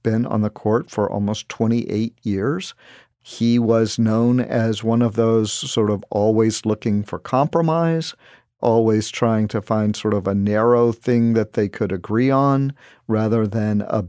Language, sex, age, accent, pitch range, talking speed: English, male, 50-69, American, 105-120 Hz, 160 wpm